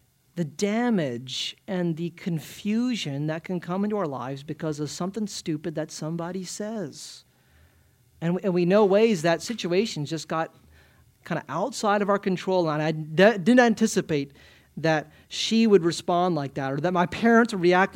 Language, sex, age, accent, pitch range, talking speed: English, male, 30-49, American, 150-205 Hz, 160 wpm